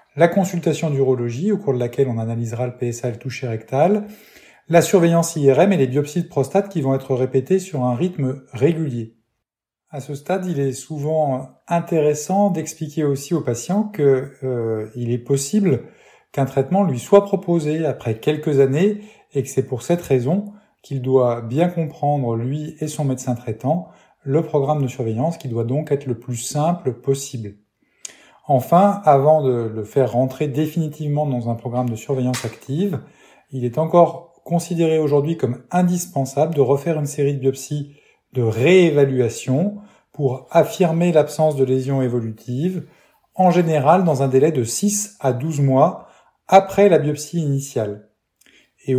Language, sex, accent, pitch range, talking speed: French, male, French, 130-165 Hz, 160 wpm